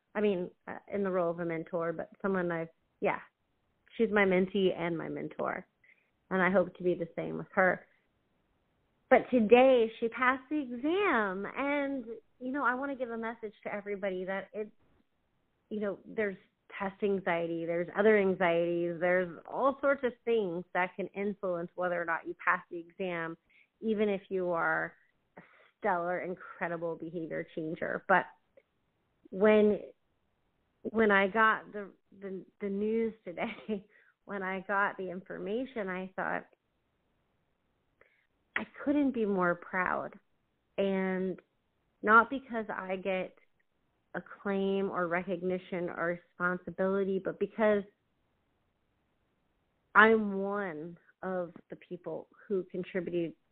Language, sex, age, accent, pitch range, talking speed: English, female, 30-49, American, 175-215 Hz, 135 wpm